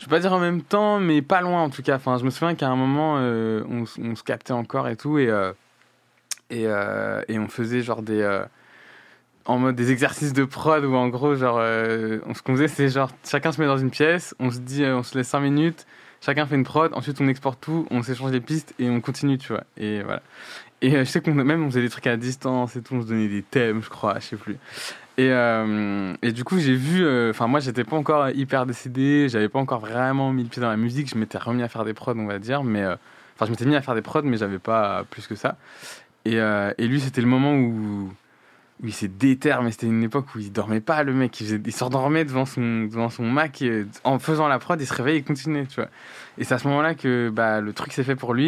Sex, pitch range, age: male, 115-140 Hz, 20-39